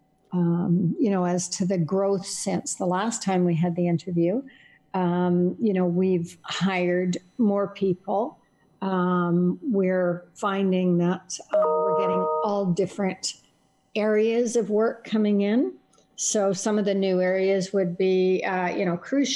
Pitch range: 180-205 Hz